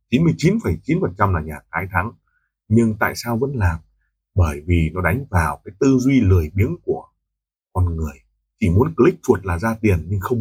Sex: male